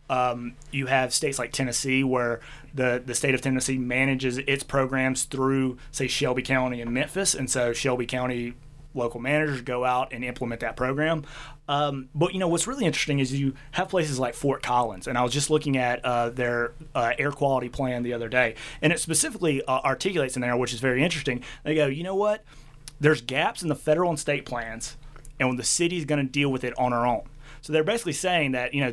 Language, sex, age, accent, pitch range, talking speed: English, male, 30-49, American, 125-150 Hz, 220 wpm